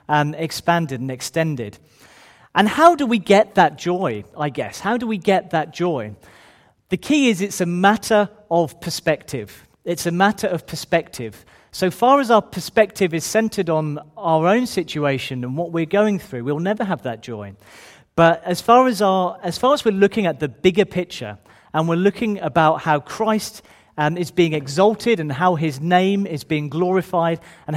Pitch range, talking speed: 145-200 Hz, 180 wpm